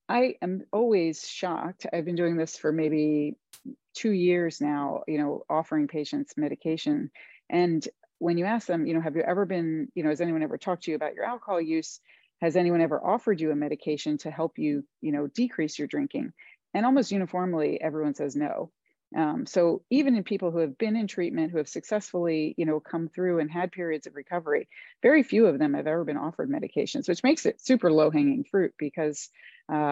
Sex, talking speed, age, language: female, 205 wpm, 30-49, English